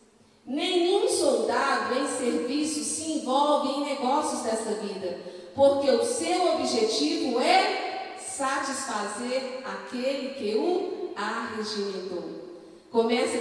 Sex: female